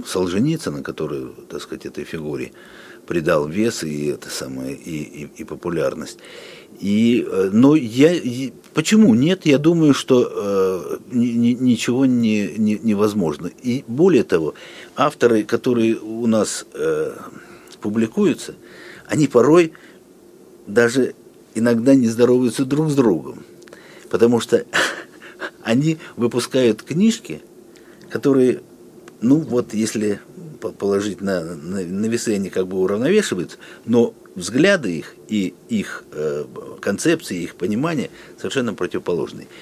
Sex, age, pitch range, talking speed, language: male, 50-69, 110-140 Hz, 115 wpm, Russian